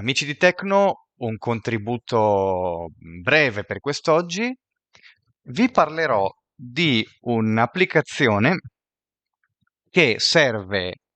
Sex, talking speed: male, 75 wpm